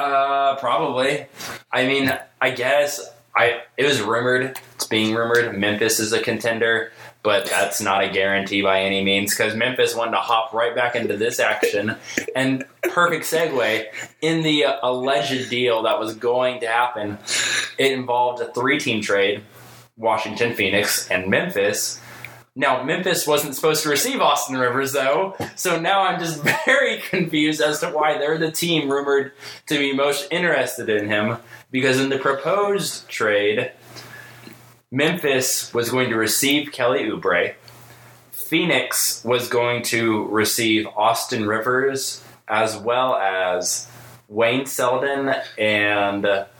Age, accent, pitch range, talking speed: 20-39, American, 115-140 Hz, 140 wpm